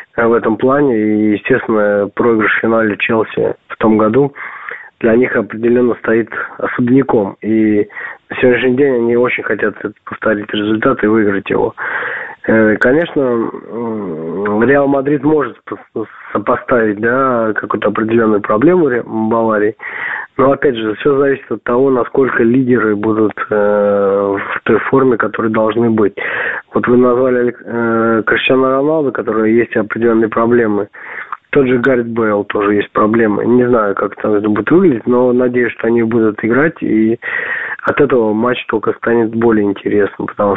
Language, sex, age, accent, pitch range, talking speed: Russian, male, 20-39, native, 105-125 Hz, 140 wpm